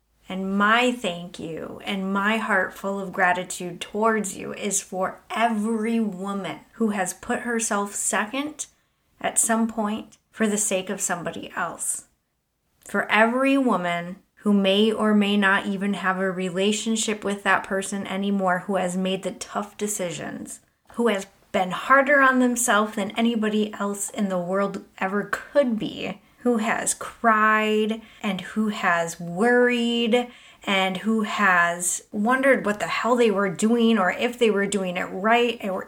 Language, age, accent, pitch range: English, 20-39, American, 195-230 Hz